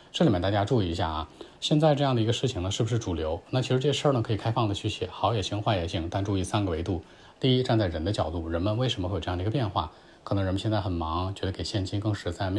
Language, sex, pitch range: Chinese, male, 90-115 Hz